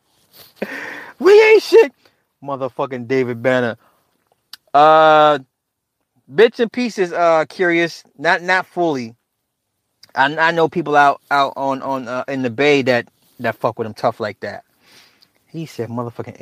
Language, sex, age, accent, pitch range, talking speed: English, male, 30-49, American, 120-180 Hz, 140 wpm